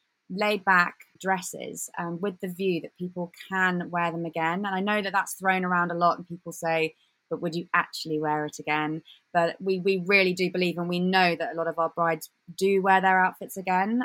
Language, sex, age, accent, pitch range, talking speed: English, female, 20-39, British, 165-185 Hz, 220 wpm